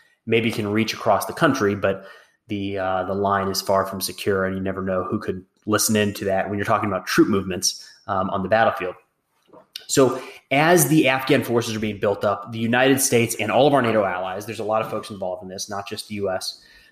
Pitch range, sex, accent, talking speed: 100-115 Hz, male, American, 230 wpm